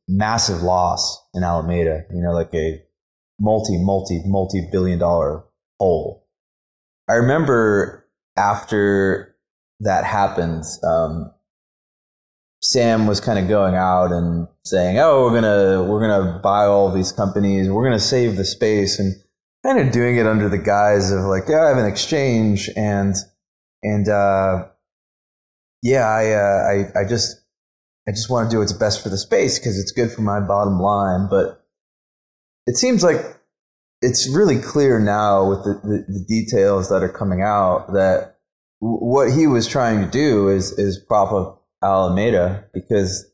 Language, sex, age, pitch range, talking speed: English, male, 20-39, 90-105 Hz, 150 wpm